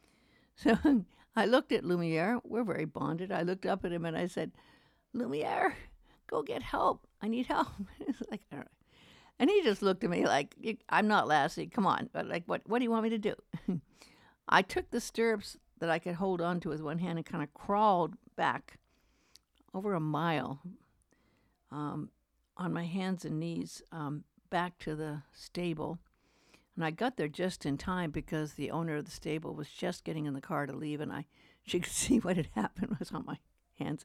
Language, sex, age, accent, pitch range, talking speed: English, female, 60-79, American, 150-200 Hz, 205 wpm